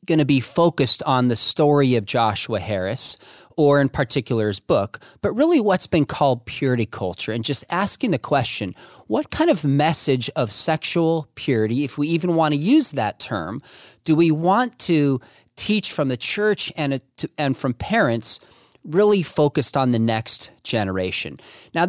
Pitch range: 125-170 Hz